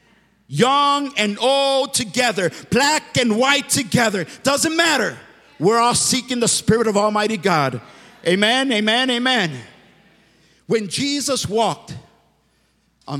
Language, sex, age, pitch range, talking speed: English, male, 50-69, 195-270 Hz, 115 wpm